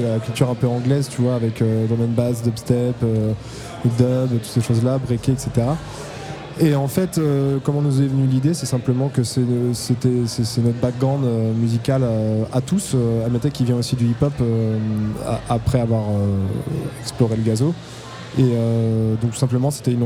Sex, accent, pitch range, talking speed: male, French, 120-140 Hz, 185 wpm